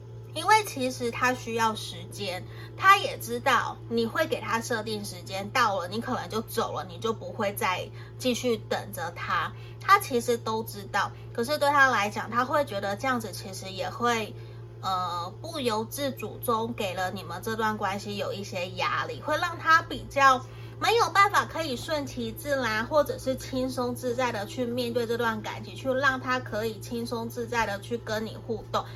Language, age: Chinese, 20-39